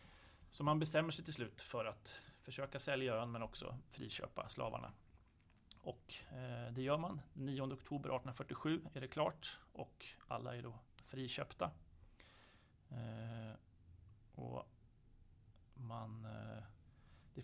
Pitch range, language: 110-130 Hz, Swedish